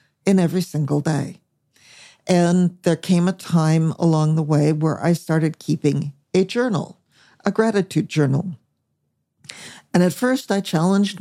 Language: English